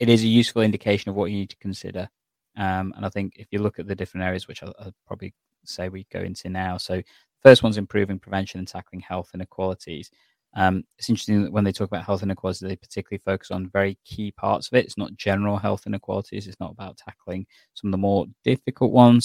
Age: 20-39